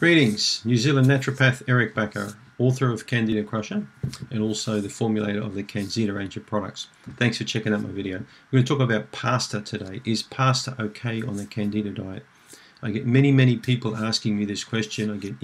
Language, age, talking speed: English, 40-59, 200 wpm